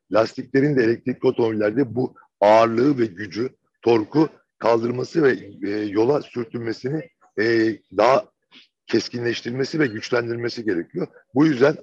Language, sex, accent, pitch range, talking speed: Turkish, male, native, 115-150 Hz, 100 wpm